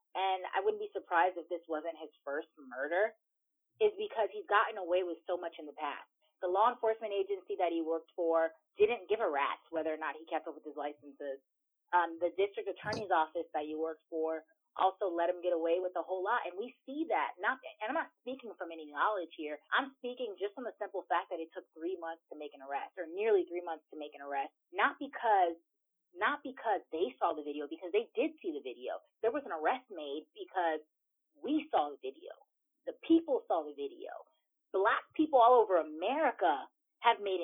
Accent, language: American, English